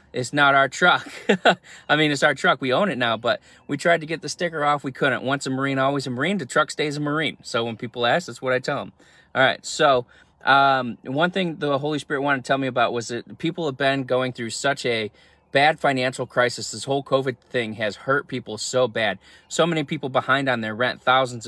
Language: English